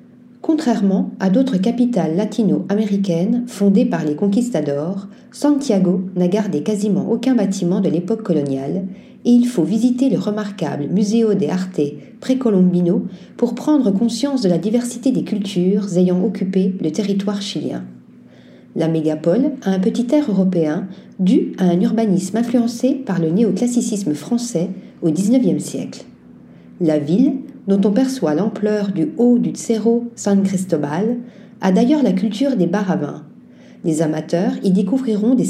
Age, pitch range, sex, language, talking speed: 40-59, 180-235 Hz, female, French, 140 wpm